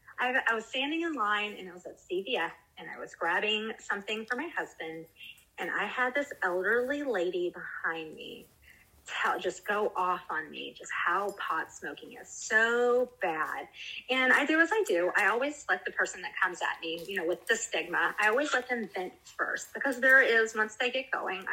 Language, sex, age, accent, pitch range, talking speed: English, female, 30-49, American, 180-245 Hz, 200 wpm